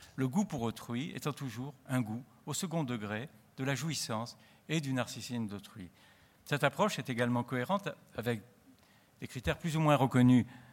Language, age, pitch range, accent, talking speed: French, 50-69, 110-150 Hz, French, 170 wpm